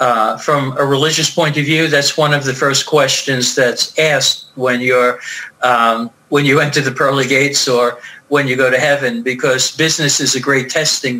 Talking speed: 195 wpm